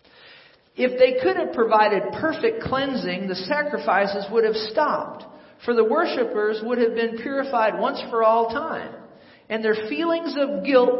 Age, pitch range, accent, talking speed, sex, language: 50-69, 205-255 Hz, American, 155 wpm, male, English